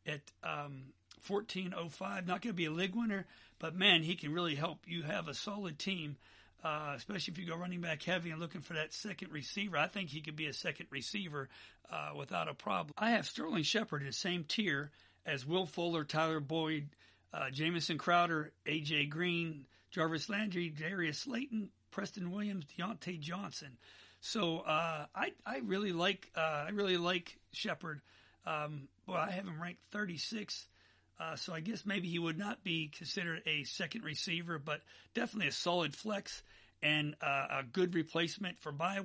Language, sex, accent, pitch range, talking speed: English, male, American, 150-185 Hz, 180 wpm